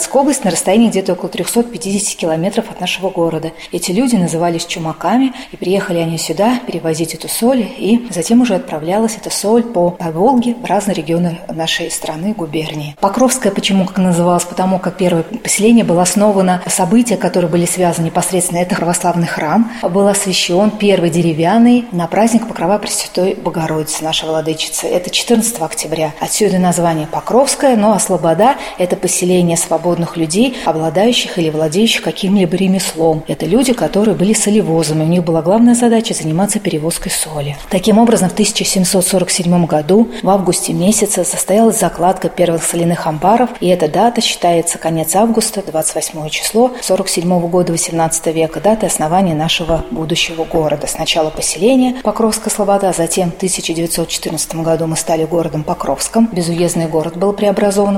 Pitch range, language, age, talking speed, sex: 165-210 Hz, Russian, 30-49, 150 wpm, female